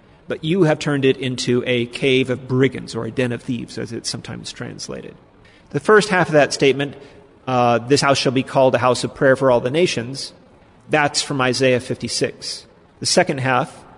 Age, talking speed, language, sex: 30-49, 200 wpm, English, male